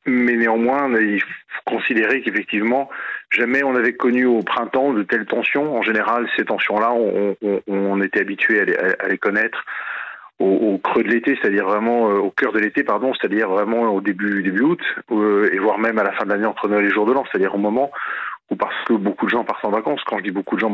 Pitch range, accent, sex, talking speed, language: 100-115 Hz, French, male, 235 wpm, French